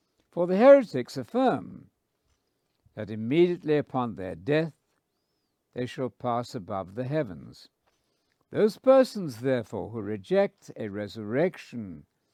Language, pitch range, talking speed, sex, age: English, 115-175 Hz, 105 wpm, male, 60-79